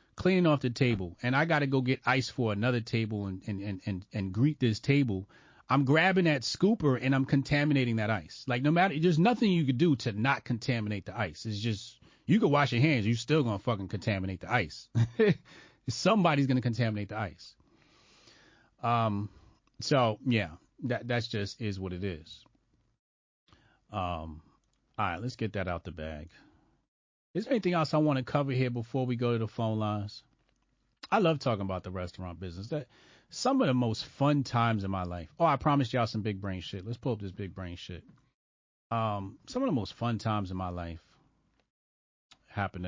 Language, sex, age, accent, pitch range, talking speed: English, male, 30-49, American, 100-135 Hz, 195 wpm